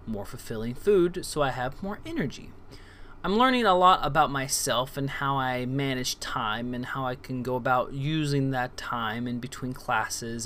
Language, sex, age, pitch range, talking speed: English, male, 20-39, 115-150 Hz, 180 wpm